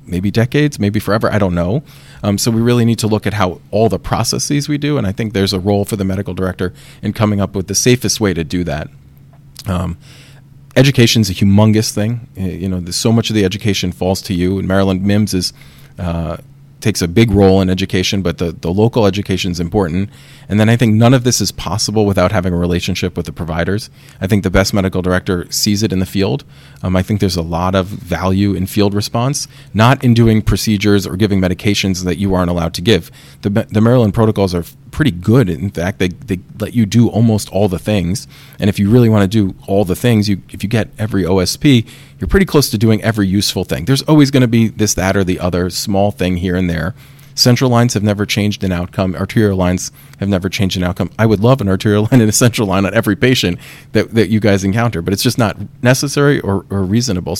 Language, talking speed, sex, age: English, 235 wpm, male, 30-49